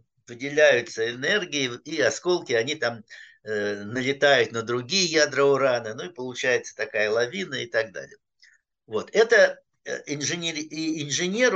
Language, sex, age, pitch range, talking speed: Russian, male, 60-79, 130-180 Hz, 130 wpm